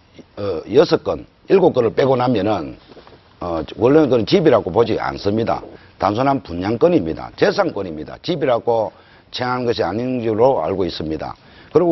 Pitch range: 110-155 Hz